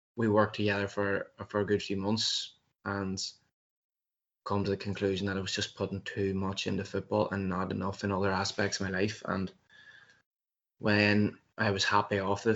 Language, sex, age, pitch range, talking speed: English, male, 20-39, 95-105 Hz, 185 wpm